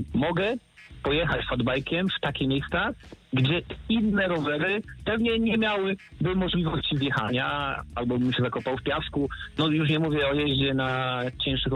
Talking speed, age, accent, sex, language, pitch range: 145 wpm, 50-69, native, male, Polish, 120-155 Hz